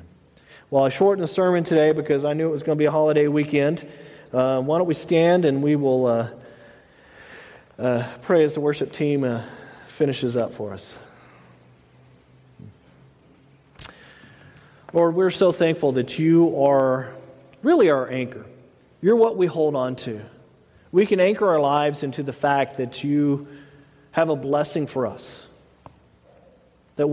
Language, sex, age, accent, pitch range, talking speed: English, male, 40-59, American, 130-165 Hz, 155 wpm